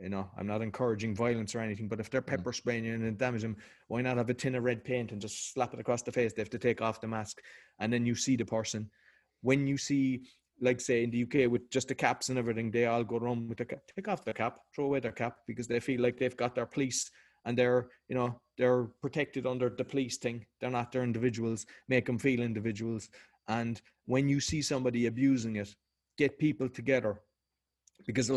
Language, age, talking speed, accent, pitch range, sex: English, 30-49, 235 wpm, Irish, 115-135 Hz, male